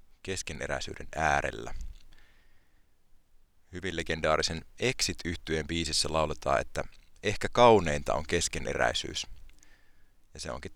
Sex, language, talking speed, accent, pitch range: male, Finnish, 85 wpm, native, 75-95 Hz